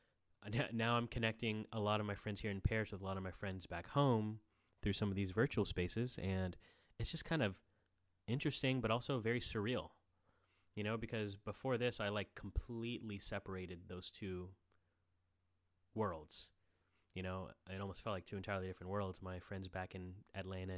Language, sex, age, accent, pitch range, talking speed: English, male, 30-49, American, 90-110 Hz, 180 wpm